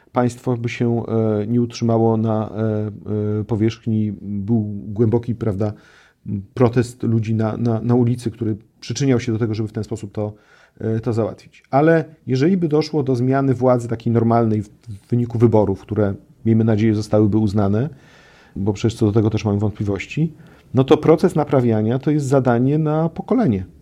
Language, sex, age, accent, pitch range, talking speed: Polish, male, 40-59, native, 115-145 Hz, 155 wpm